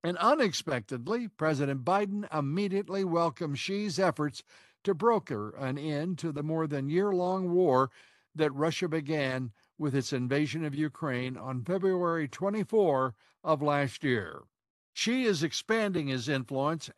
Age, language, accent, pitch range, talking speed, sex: 60-79, English, American, 135-185 Hz, 130 wpm, male